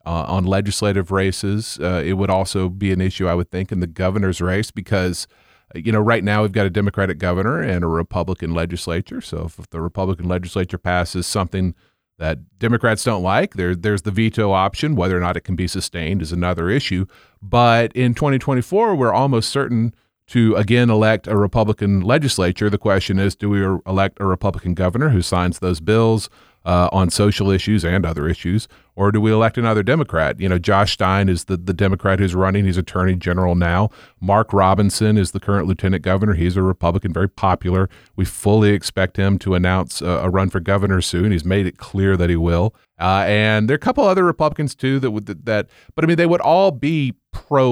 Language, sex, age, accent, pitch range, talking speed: English, male, 30-49, American, 90-110 Hz, 205 wpm